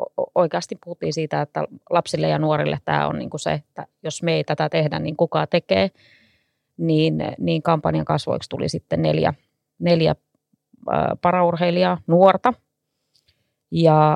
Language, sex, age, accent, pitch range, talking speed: Finnish, female, 20-39, native, 140-170 Hz, 140 wpm